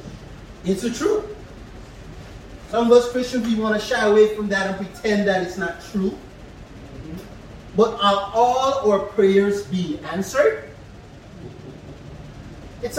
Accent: American